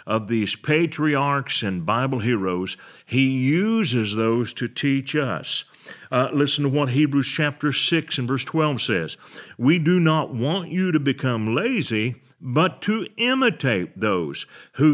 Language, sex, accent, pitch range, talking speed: English, male, American, 110-145 Hz, 145 wpm